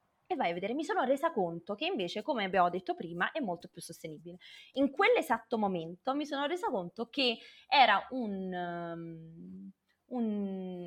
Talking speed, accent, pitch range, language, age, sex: 165 wpm, native, 180-255 Hz, Italian, 20-39, female